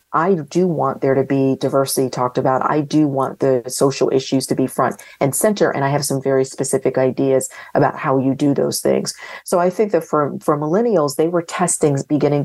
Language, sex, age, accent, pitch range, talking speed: English, female, 40-59, American, 135-150 Hz, 210 wpm